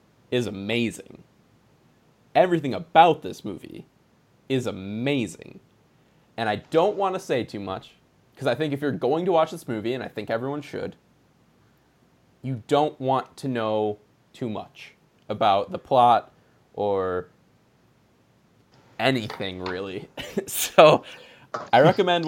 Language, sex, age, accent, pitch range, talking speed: English, male, 20-39, American, 115-150 Hz, 125 wpm